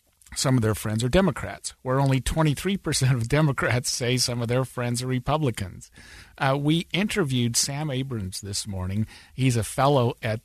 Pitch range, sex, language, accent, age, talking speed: 110-135 Hz, male, English, American, 50-69, 165 wpm